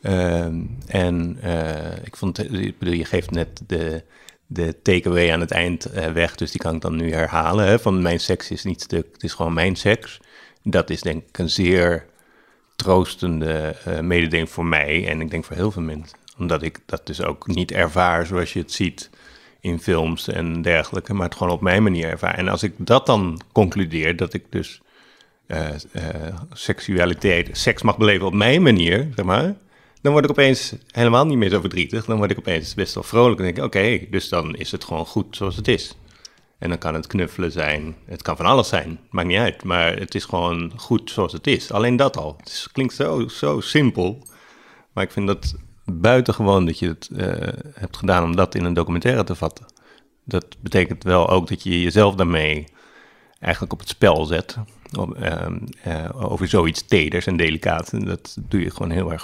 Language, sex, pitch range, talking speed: Dutch, male, 85-105 Hz, 205 wpm